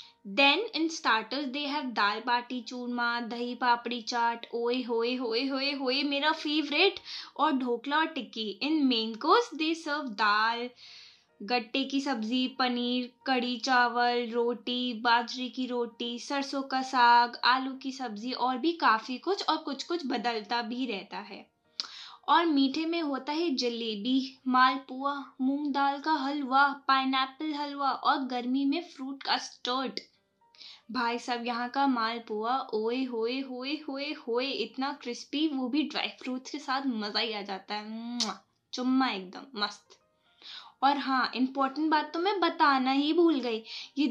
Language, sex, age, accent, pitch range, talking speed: English, female, 20-39, Indian, 240-290 Hz, 135 wpm